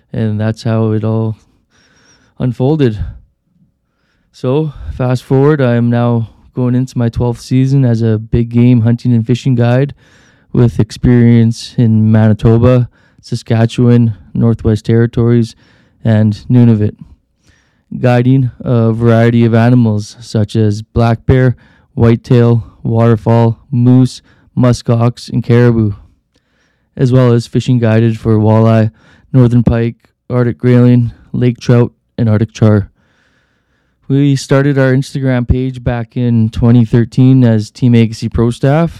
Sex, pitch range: male, 115-125 Hz